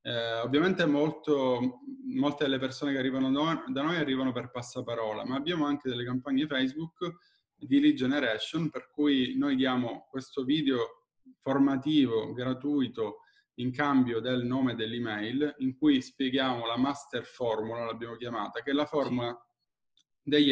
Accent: native